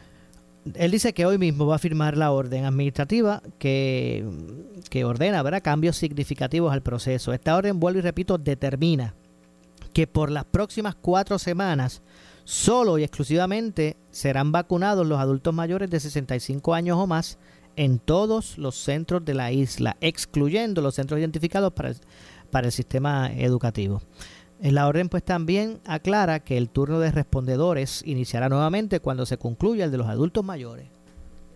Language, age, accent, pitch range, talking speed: Spanish, 40-59, American, 125-175 Hz, 150 wpm